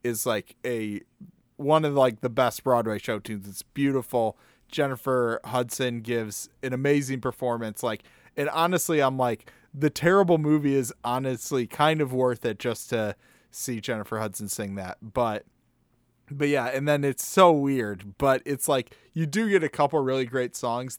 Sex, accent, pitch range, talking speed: male, American, 115-150 Hz, 170 wpm